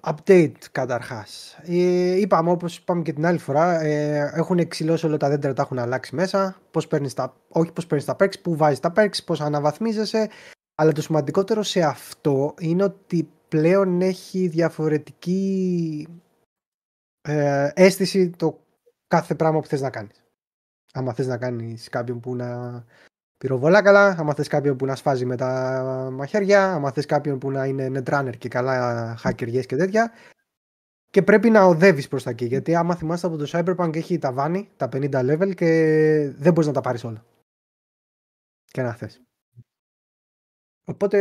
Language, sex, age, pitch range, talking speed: Greek, male, 20-39, 140-190 Hz, 160 wpm